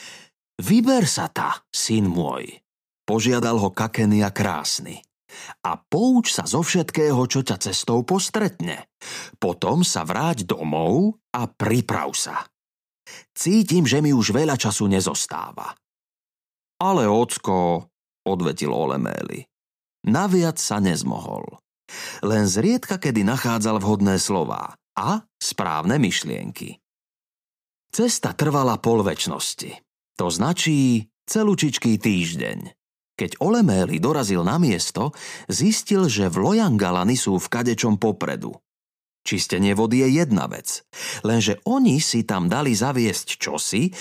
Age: 30-49